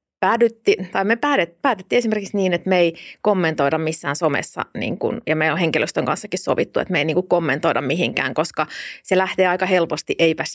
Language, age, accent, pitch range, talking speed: Finnish, 30-49, native, 160-195 Hz, 190 wpm